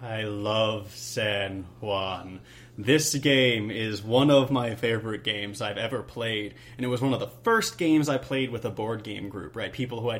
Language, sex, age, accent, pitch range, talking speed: English, male, 30-49, American, 115-145 Hz, 200 wpm